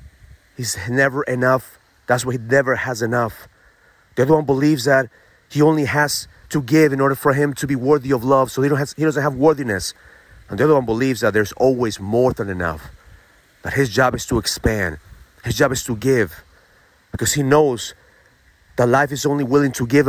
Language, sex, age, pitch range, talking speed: English, male, 30-49, 100-140 Hz, 195 wpm